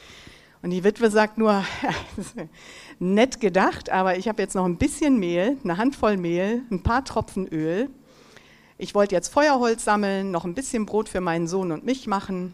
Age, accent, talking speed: 60-79, German, 175 wpm